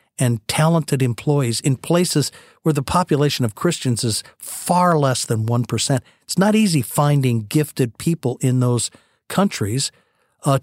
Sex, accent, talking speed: male, American, 140 wpm